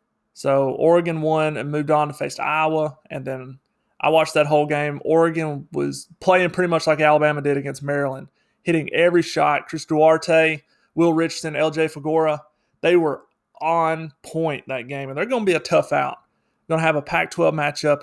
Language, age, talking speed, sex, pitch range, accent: English, 30-49, 190 wpm, male, 145-165 Hz, American